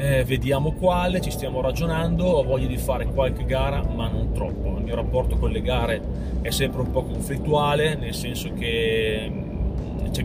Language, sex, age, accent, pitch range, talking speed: Italian, male, 30-49, native, 95-130 Hz, 170 wpm